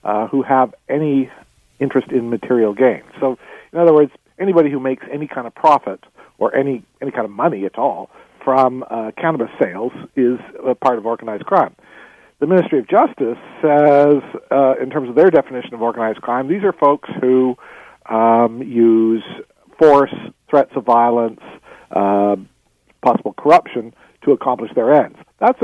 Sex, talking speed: male, 160 wpm